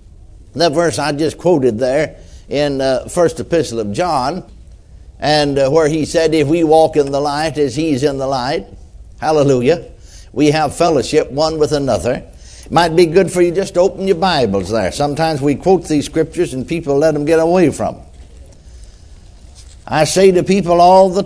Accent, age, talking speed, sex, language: American, 60-79, 180 wpm, male, English